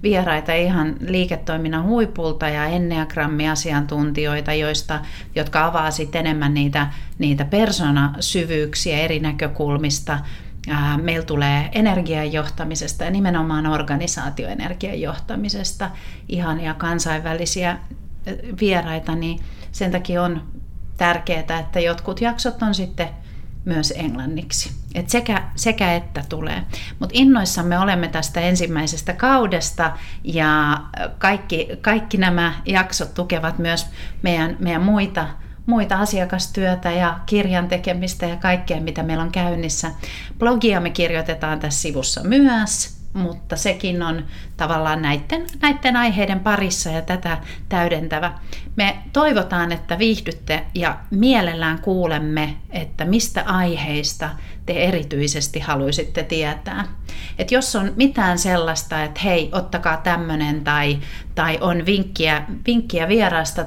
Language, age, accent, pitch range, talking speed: English, 40-59, Finnish, 155-185 Hz, 110 wpm